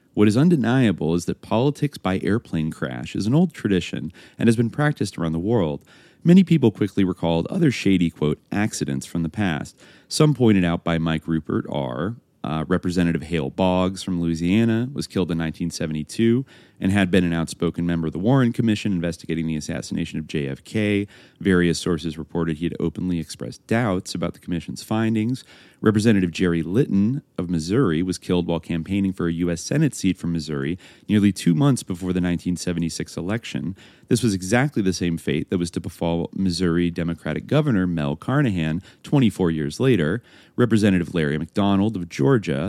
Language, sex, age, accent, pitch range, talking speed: English, male, 30-49, American, 85-110 Hz, 170 wpm